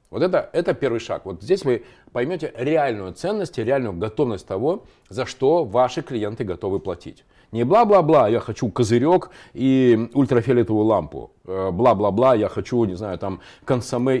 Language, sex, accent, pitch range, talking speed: Russian, male, native, 110-155 Hz, 150 wpm